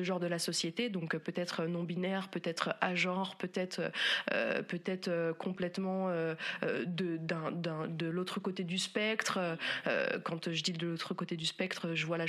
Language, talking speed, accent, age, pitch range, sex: French, 175 wpm, French, 20-39, 170-205 Hz, female